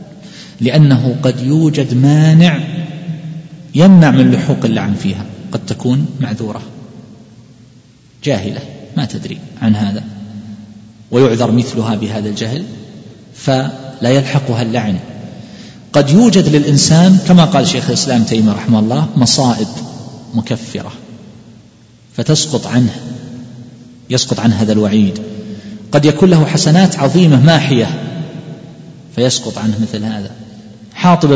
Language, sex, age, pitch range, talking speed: Arabic, male, 40-59, 115-155 Hz, 100 wpm